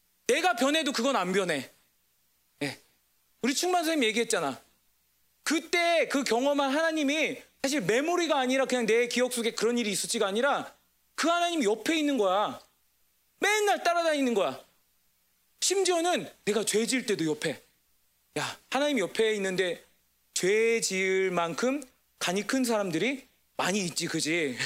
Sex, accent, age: male, native, 40-59